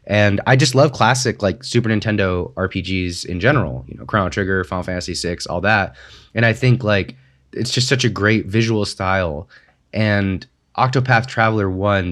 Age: 20-39